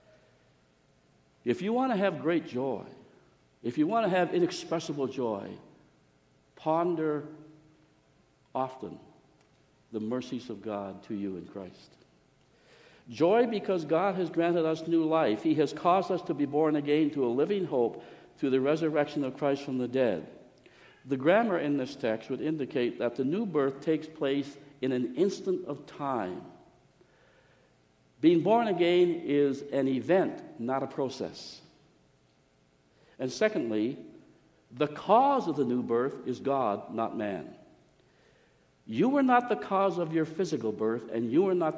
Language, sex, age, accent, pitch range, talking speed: English, male, 60-79, American, 125-170 Hz, 150 wpm